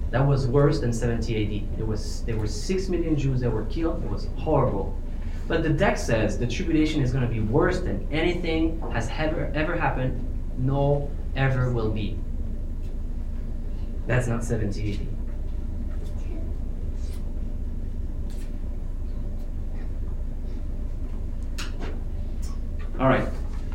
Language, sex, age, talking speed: English, male, 20-39, 110 wpm